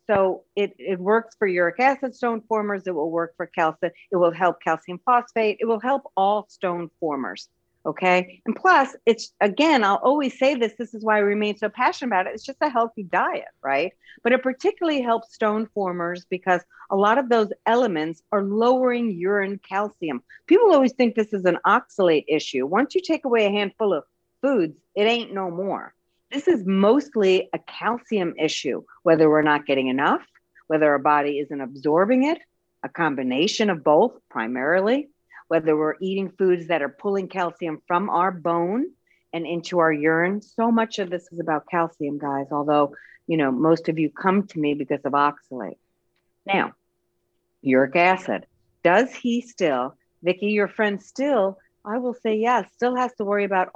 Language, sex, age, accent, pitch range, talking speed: English, female, 50-69, American, 165-230 Hz, 180 wpm